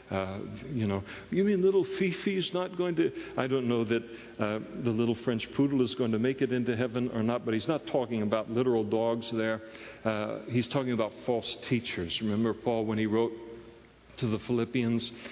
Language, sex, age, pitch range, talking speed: English, male, 60-79, 110-125 Hz, 195 wpm